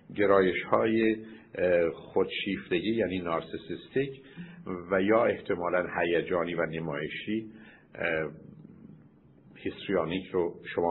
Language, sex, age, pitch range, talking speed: Persian, male, 50-69, 95-140 Hz, 75 wpm